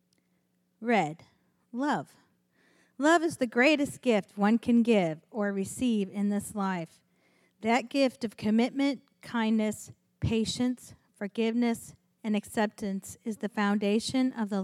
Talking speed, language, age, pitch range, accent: 120 wpm, English, 40-59, 190-235 Hz, American